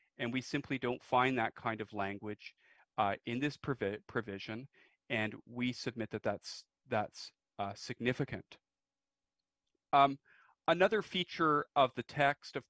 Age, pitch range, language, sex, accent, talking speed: 40-59, 110-135 Hz, English, male, American, 135 wpm